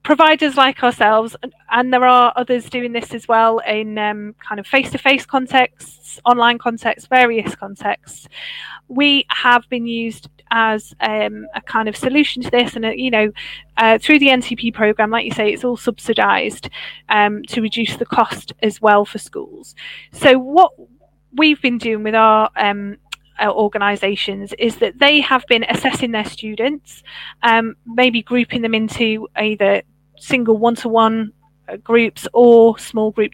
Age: 10-29